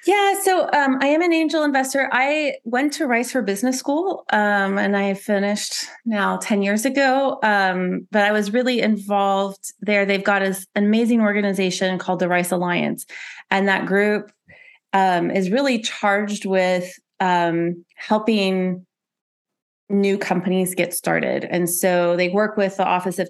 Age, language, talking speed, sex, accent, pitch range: 30-49, English, 155 wpm, female, American, 180-215 Hz